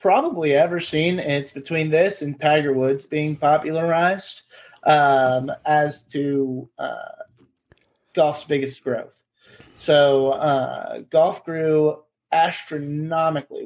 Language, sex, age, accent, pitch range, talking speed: English, male, 30-49, American, 130-155 Hz, 100 wpm